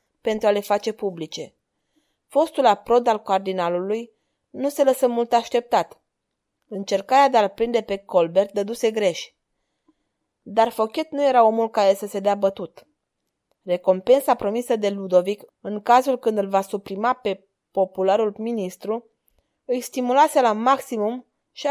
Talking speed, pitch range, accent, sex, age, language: 140 wpm, 195-245 Hz, native, female, 20-39, Romanian